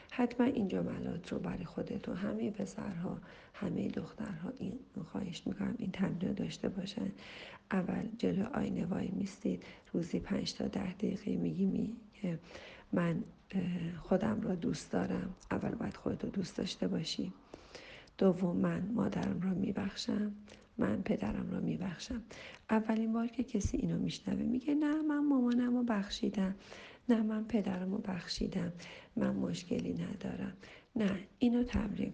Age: 40-59